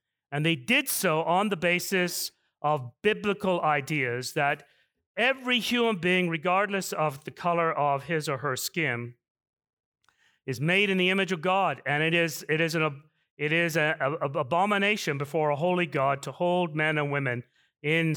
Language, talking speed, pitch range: English, 175 wpm, 150-190 Hz